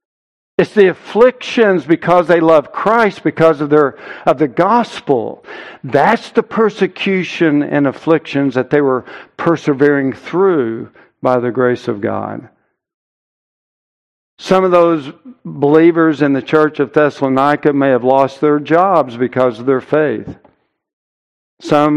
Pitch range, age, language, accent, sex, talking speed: 130-165 Hz, 60-79, English, American, male, 125 wpm